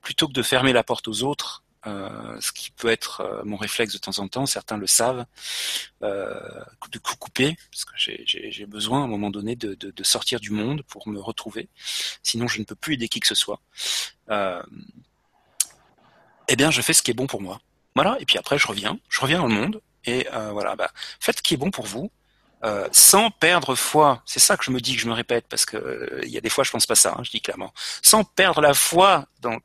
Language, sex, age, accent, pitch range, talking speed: French, male, 40-59, French, 115-150 Hz, 250 wpm